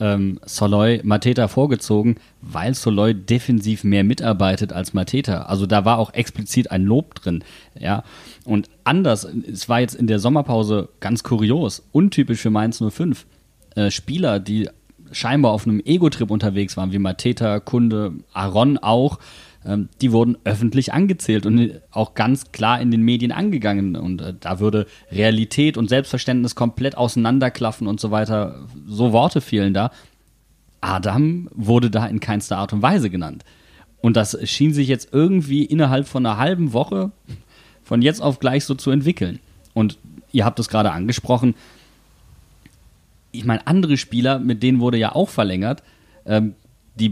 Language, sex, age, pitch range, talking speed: German, male, 30-49, 105-125 Hz, 150 wpm